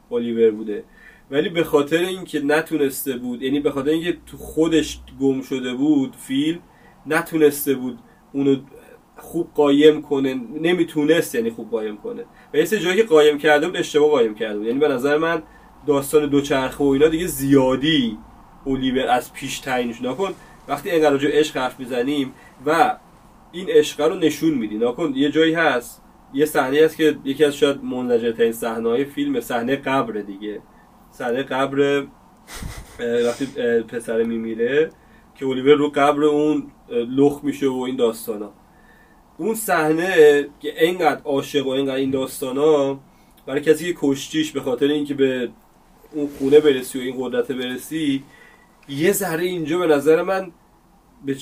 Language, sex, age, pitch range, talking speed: Persian, male, 30-49, 135-165 Hz, 150 wpm